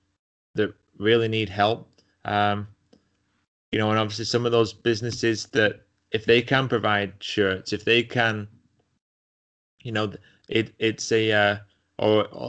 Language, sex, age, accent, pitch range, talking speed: English, male, 20-39, British, 100-115 Hz, 140 wpm